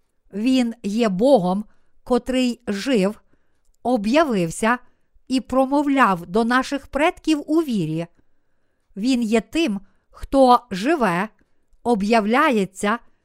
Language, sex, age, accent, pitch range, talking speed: Ukrainian, female, 50-69, native, 210-280 Hz, 85 wpm